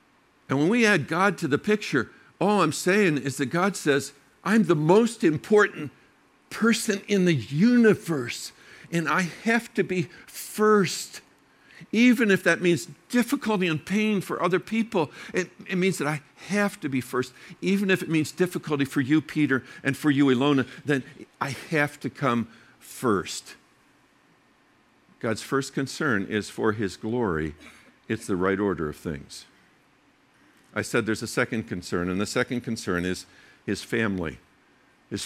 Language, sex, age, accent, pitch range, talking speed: English, male, 60-79, American, 115-170 Hz, 160 wpm